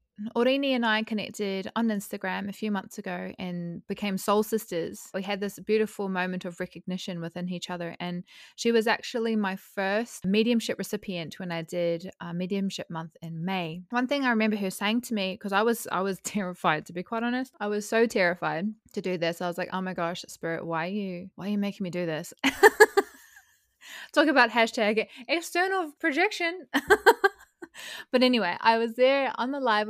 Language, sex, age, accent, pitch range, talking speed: English, female, 20-39, Australian, 175-225 Hz, 190 wpm